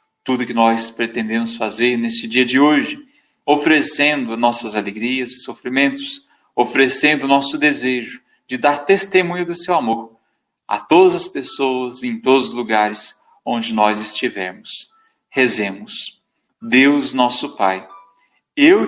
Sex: male